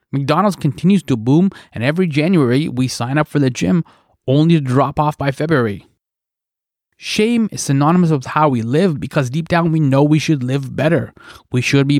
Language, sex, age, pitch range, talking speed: English, male, 20-39, 130-175 Hz, 190 wpm